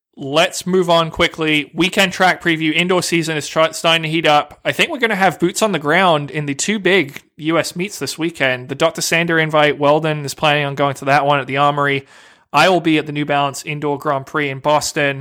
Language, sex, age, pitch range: English, male, 20-39, 145-170 Hz